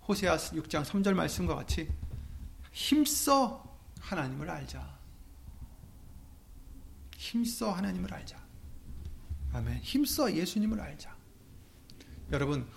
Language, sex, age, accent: Korean, male, 30-49, native